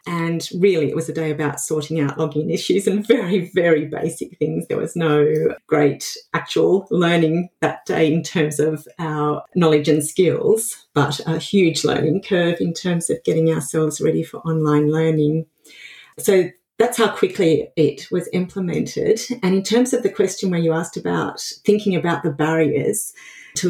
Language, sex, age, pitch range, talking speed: English, female, 40-59, 155-195 Hz, 170 wpm